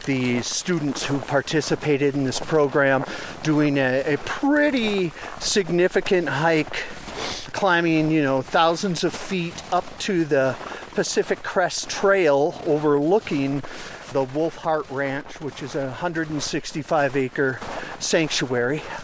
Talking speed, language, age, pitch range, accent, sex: 115 wpm, English, 50-69, 145-195 Hz, American, male